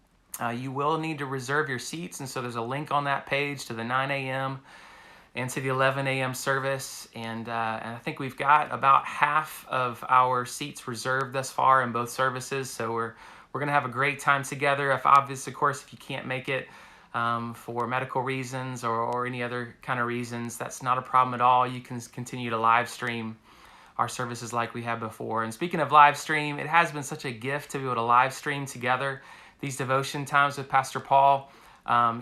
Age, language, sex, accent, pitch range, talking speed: 30-49, English, male, American, 125-145 Hz, 215 wpm